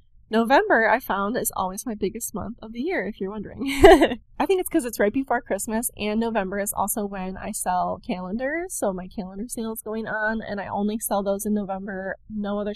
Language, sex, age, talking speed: English, female, 20-39, 215 wpm